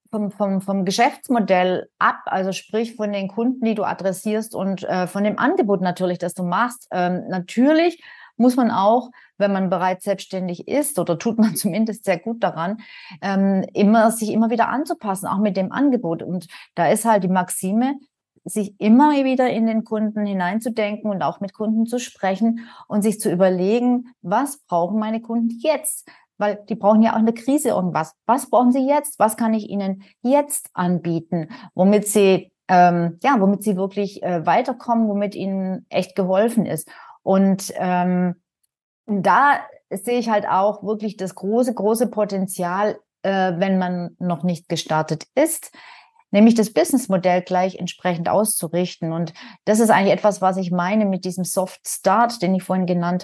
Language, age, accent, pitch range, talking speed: German, 30-49, German, 185-230 Hz, 170 wpm